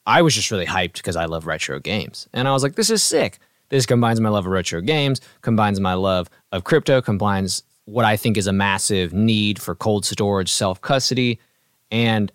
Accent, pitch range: American, 95-120 Hz